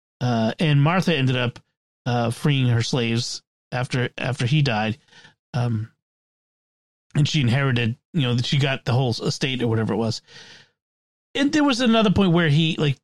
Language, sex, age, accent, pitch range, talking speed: English, male, 30-49, American, 130-180 Hz, 170 wpm